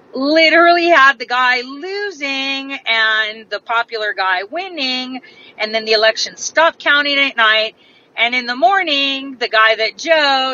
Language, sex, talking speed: English, female, 150 wpm